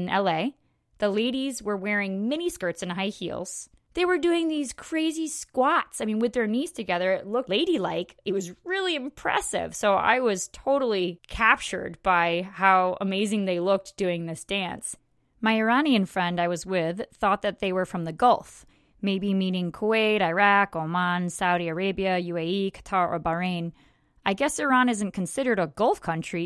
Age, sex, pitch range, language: 20-39, female, 175-225 Hz, English